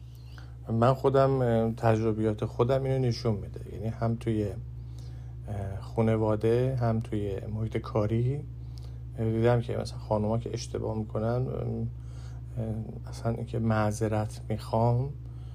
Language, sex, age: Persian, male, 50-69